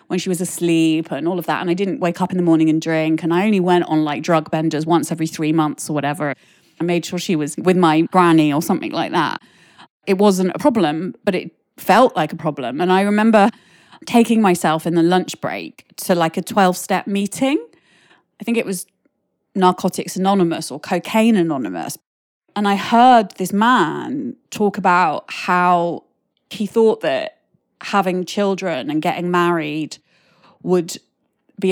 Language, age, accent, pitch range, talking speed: English, 30-49, British, 170-215 Hz, 180 wpm